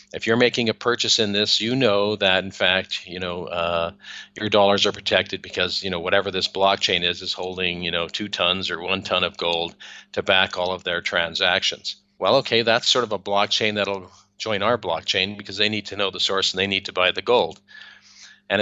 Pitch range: 95-110 Hz